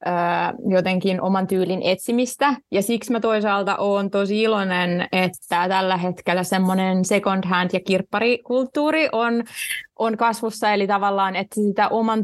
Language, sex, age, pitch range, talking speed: Finnish, female, 20-39, 190-225 Hz, 130 wpm